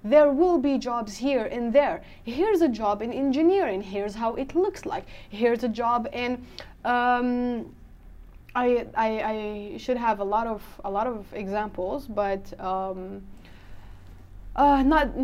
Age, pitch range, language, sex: 20-39, 215-290 Hz, English, female